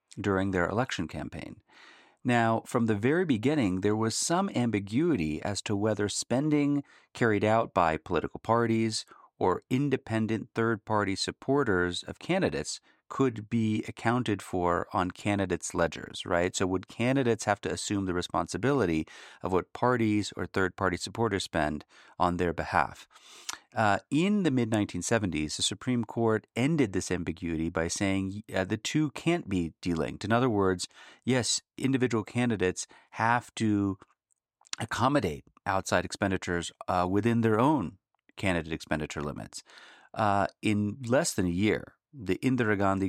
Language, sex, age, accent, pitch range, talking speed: English, male, 40-59, American, 90-115 Hz, 140 wpm